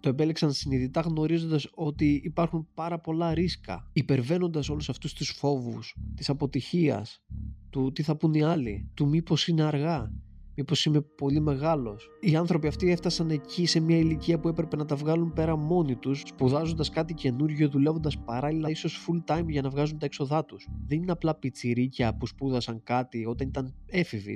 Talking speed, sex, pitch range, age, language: 170 wpm, male, 115-155 Hz, 20-39, Greek